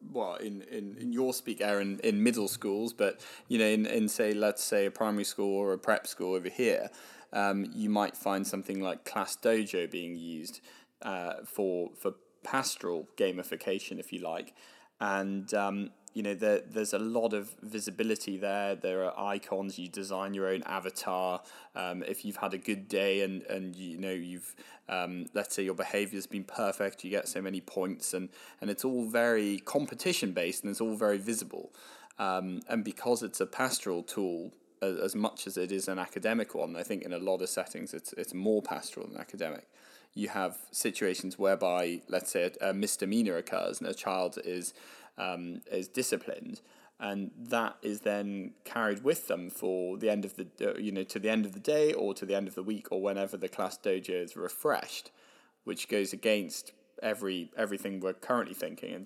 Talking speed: 190 wpm